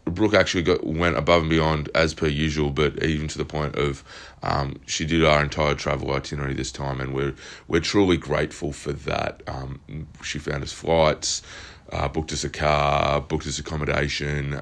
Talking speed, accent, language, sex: 185 wpm, Australian, English, male